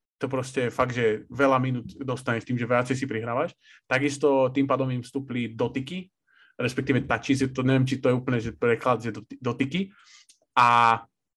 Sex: male